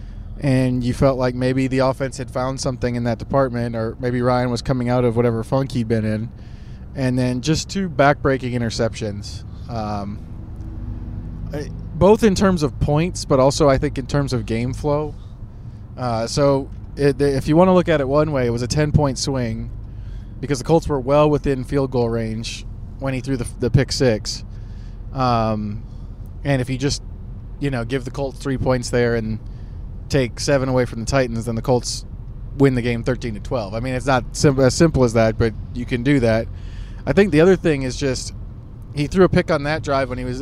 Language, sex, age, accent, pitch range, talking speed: English, male, 20-39, American, 110-145 Hz, 205 wpm